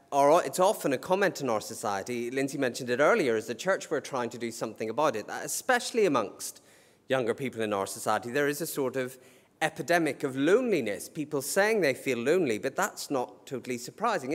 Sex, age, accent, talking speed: male, 30-49, British, 190 wpm